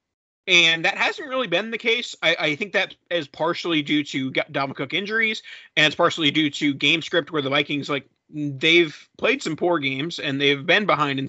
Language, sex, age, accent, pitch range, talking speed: English, male, 30-49, American, 145-195 Hz, 205 wpm